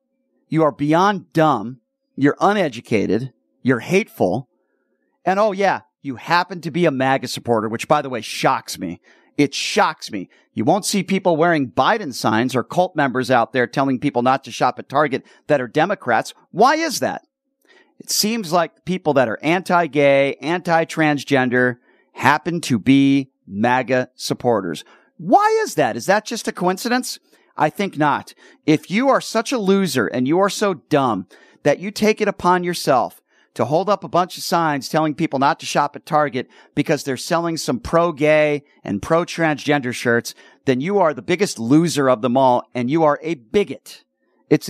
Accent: American